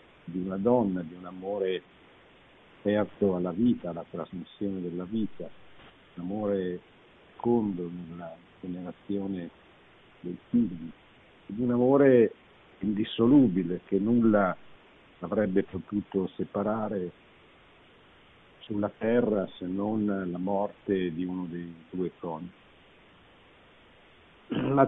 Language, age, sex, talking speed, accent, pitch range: Italian, 50-69, male, 100 wpm, native, 95-125 Hz